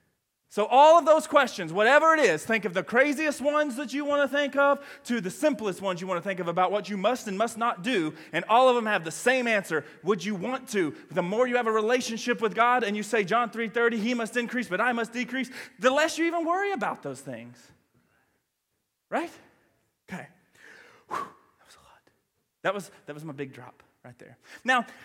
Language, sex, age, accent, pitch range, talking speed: English, male, 30-49, American, 170-260 Hz, 225 wpm